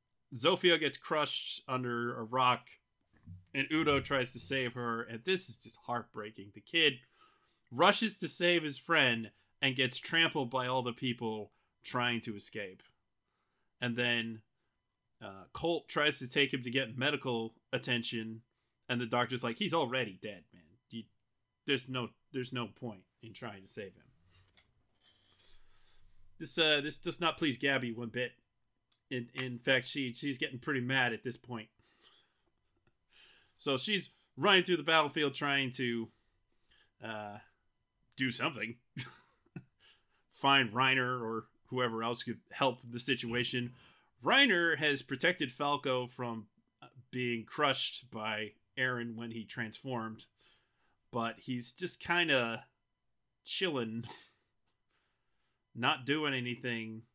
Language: English